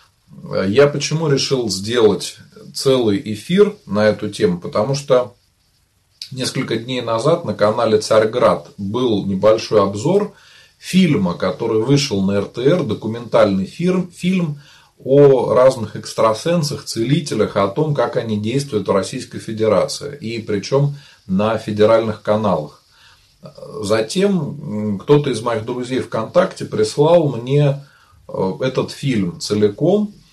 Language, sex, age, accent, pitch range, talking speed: Russian, male, 30-49, native, 105-145 Hz, 110 wpm